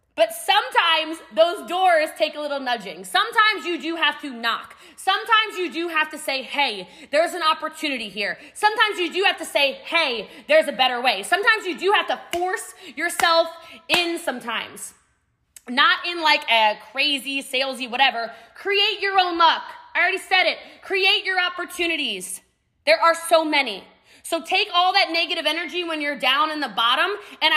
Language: English